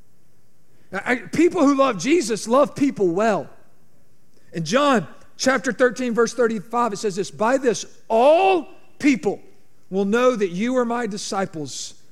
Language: English